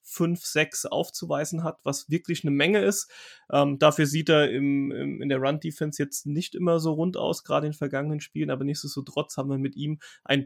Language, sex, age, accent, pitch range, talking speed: German, male, 30-49, German, 140-170 Hz, 200 wpm